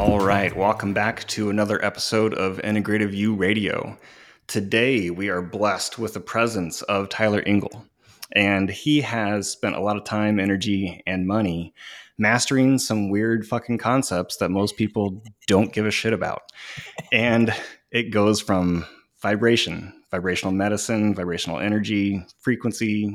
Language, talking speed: English, 145 wpm